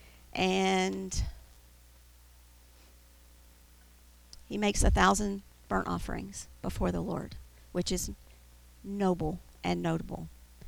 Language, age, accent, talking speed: English, 50-69, American, 85 wpm